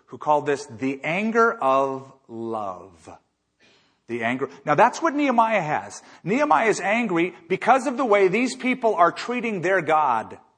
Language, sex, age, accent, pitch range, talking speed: English, male, 40-59, American, 135-185 Hz, 155 wpm